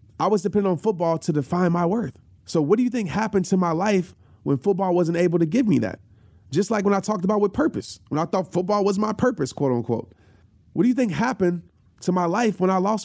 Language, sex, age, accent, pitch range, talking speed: English, male, 30-49, American, 145-200 Hz, 250 wpm